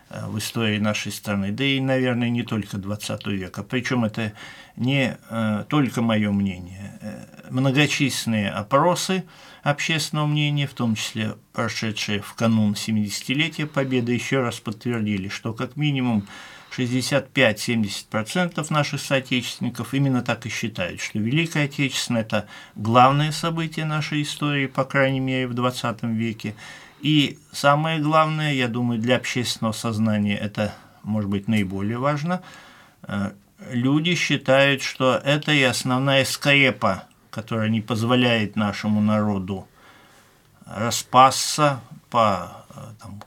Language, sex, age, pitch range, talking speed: Russian, male, 50-69, 110-140 Hz, 120 wpm